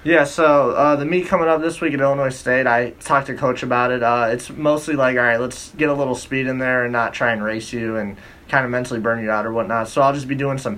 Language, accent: English, American